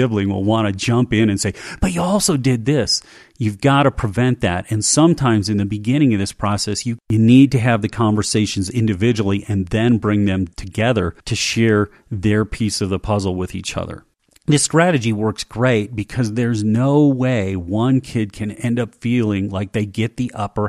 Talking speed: 195 wpm